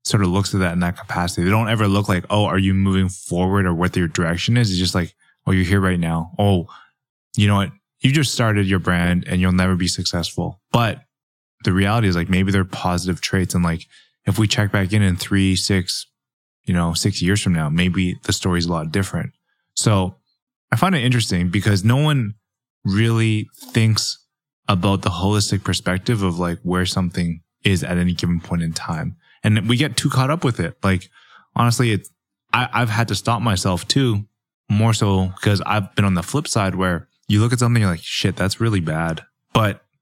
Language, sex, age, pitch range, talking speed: English, male, 20-39, 90-115 Hz, 215 wpm